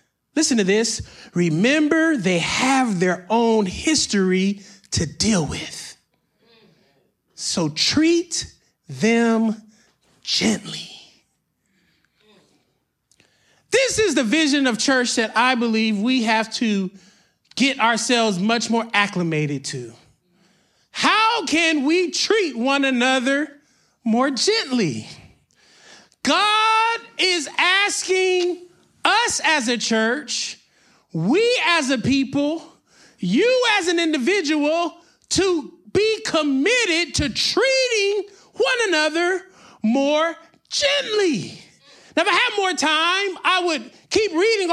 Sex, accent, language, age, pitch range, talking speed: male, American, English, 30-49, 235-360 Hz, 100 wpm